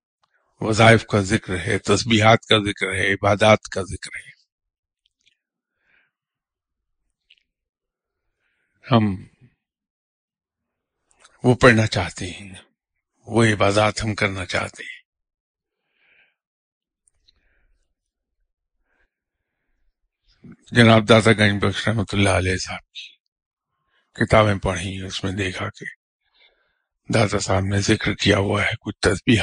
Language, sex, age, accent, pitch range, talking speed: English, male, 50-69, Indian, 95-120 Hz, 75 wpm